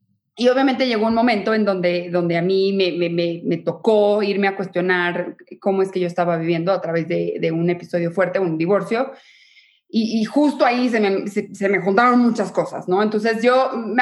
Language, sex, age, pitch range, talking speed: Spanish, female, 20-39, 205-270 Hz, 210 wpm